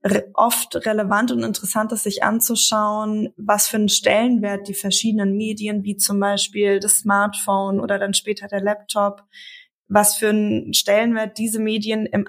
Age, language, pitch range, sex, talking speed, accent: 20-39, German, 205-235 Hz, female, 150 wpm, German